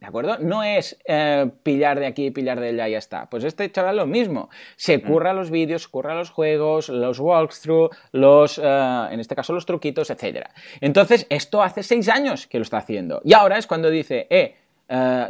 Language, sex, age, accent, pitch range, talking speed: Spanish, male, 20-39, Spanish, 130-210 Hz, 210 wpm